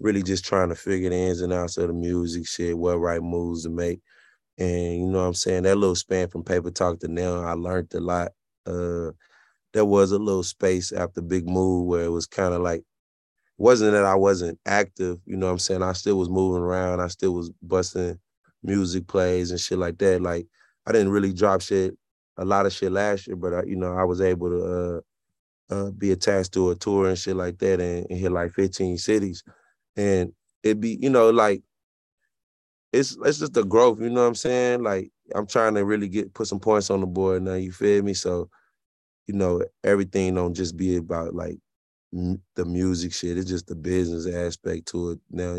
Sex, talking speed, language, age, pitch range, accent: male, 215 wpm, English, 20-39, 90-100 Hz, American